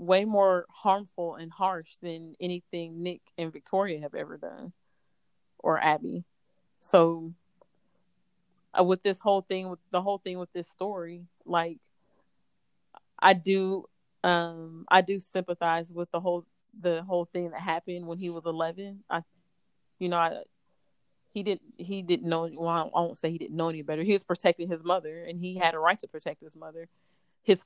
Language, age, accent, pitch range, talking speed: English, 30-49, American, 165-185 Hz, 175 wpm